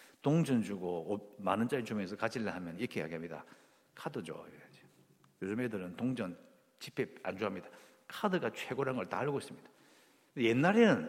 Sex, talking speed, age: male, 125 wpm, 50-69